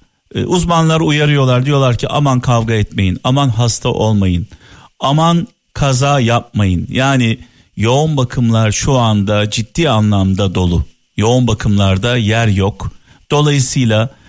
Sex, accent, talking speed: male, native, 110 wpm